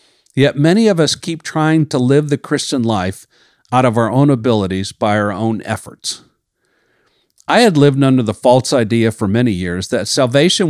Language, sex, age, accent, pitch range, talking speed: English, male, 50-69, American, 115-160 Hz, 180 wpm